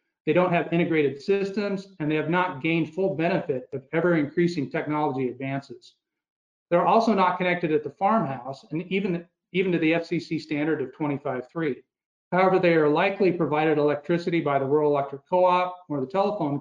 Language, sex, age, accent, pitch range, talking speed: English, male, 40-59, American, 145-175 Hz, 165 wpm